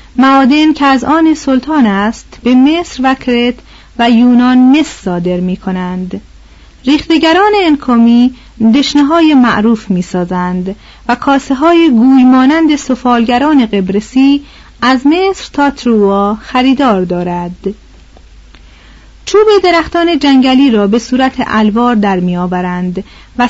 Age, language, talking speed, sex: 40-59, Persian, 105 wpm, female